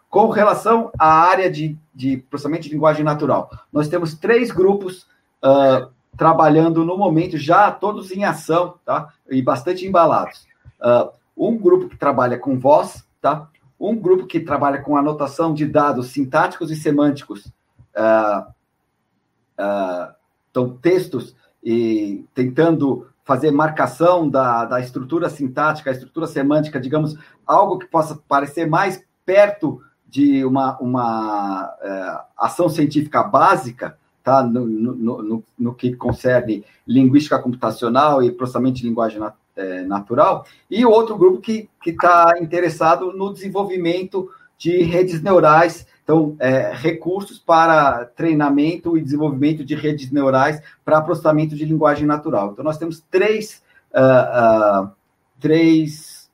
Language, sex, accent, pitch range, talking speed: Portuguese, male, Brazilian, 130-175 Hz, 135 wpm